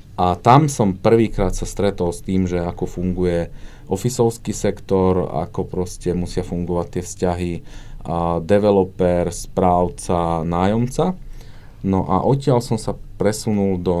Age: 30-49